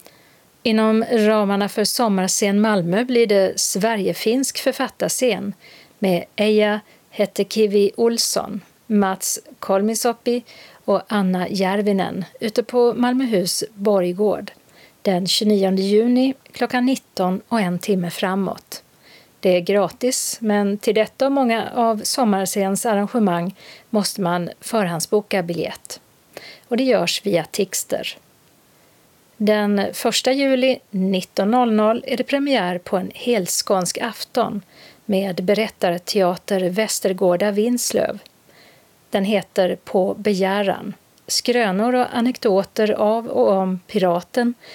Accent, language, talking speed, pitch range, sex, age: native, Swedish, 105 wpm, 190-230 Hz, female, 40-59